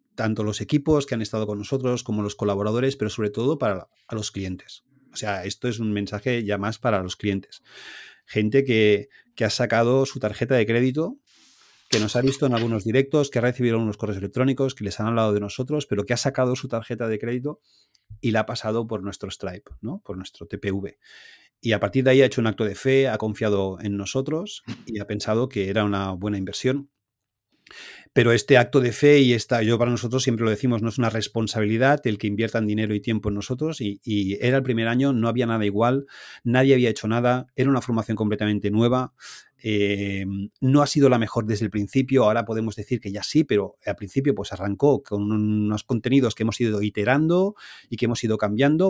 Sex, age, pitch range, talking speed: male, 30-49, 105-125 Hz, 215 wpm